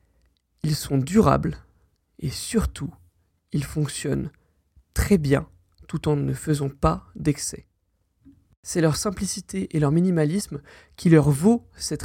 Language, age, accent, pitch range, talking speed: French, 20-39, French, 140-170 Hz, 125 wpm